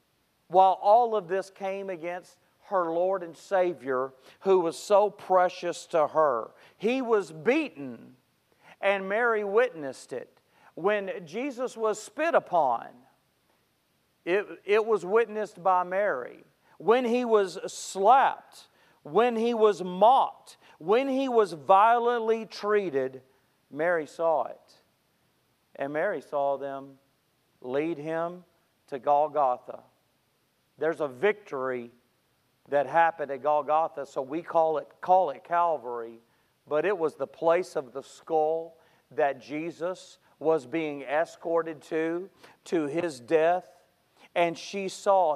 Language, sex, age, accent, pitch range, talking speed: English, male, 40-59, American, 150-200 Hz, 120 wpm